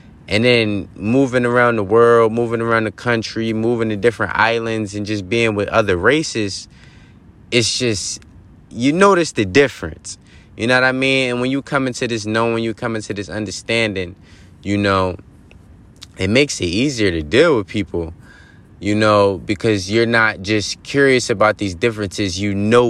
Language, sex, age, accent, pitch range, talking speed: English, male, 20-39, American, 100-115 Hz, 170 wpm